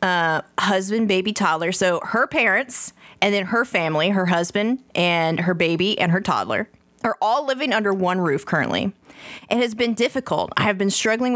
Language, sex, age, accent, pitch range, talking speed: English, female, 20-39, American, 170-225 Hz, 180 wpm